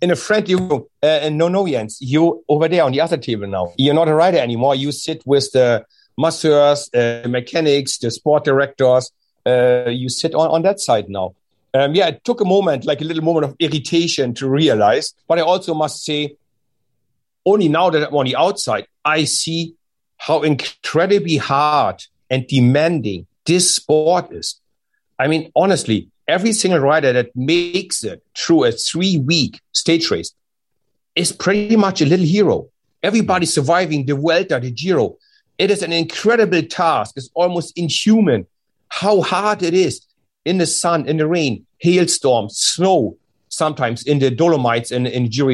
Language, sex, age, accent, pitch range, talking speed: English, male, 60-79, German, 130-175 Hz, 170 wpm